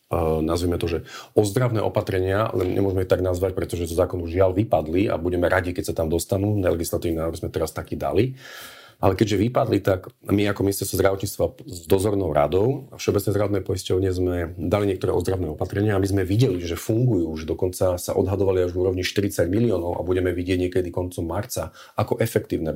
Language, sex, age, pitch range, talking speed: Slovak, male, 40-59, 90-105 Hz, 185 wpm